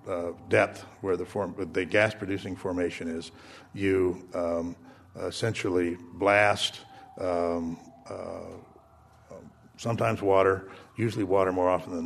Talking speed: 110 wpm